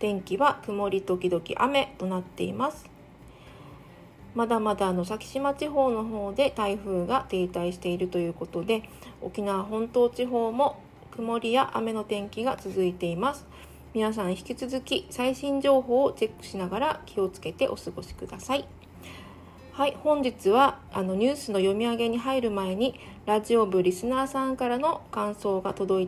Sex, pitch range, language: female, 190-260 Hz, Japanese